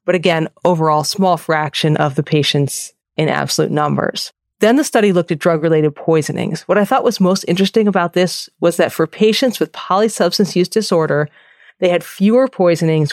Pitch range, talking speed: 155-185 Hz, 175 wpm